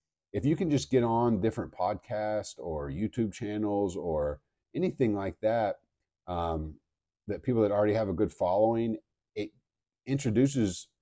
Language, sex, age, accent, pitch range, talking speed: English, male, 50-69, American, 85-105 Hz, 140 wpm